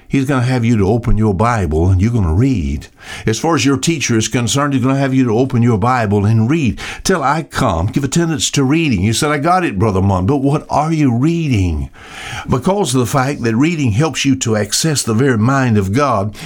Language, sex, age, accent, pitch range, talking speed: English, male, 60-79, American, 105-140 Hz, 240 wpm